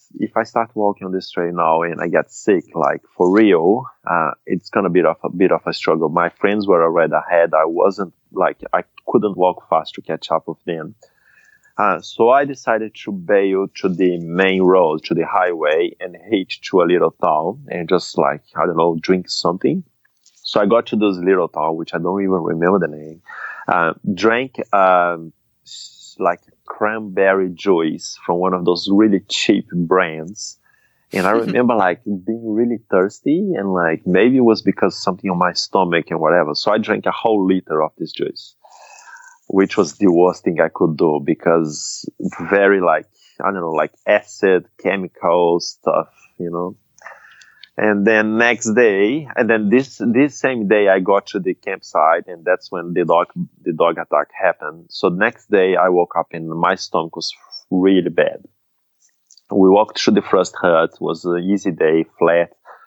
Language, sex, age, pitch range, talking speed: English, male, 30-49, 85-105 Hz, 185 wpm